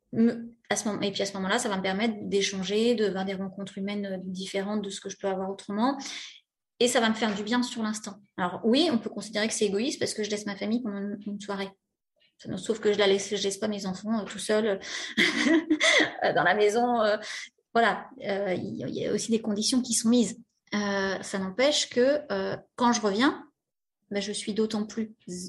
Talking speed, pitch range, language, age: 230 wpm, 205-240 Hz, French, 20-39